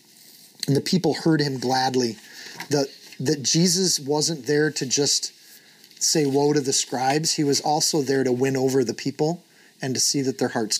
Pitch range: 125-155 Hz